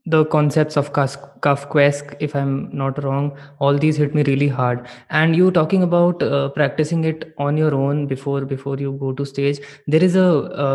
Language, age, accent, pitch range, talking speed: Hindi, 20-39, native, 140-160 Hz, 195 wpm